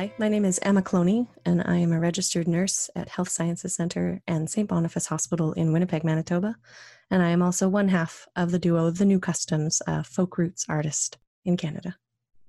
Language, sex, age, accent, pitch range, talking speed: English, female, 20-39, American, 160-185 Hz, 200 wpm